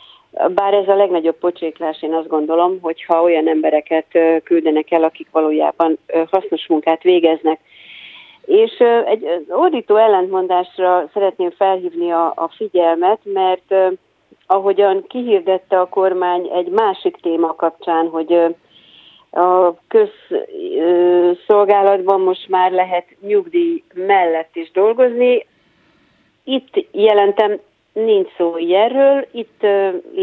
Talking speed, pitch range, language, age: 105 wpm, 170-220 Hz, Hungarian, 40-59